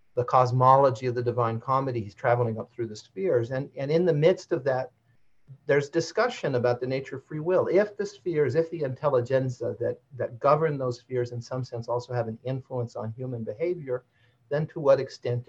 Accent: American